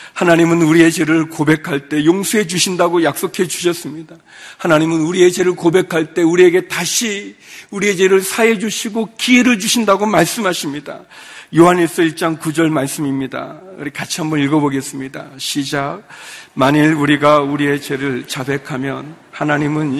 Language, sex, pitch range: Korean, male, 160-240 Hz